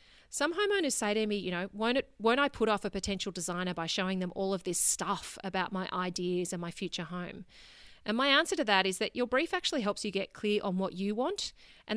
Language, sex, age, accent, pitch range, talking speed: English, female, 30-49, Australian, 185-245 Hz, 245 wpm